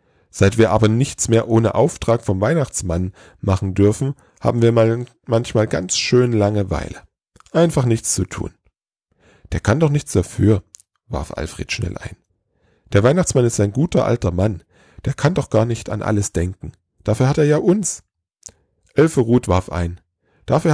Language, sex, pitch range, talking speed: German, male, 95-125 Hz, 155 wpm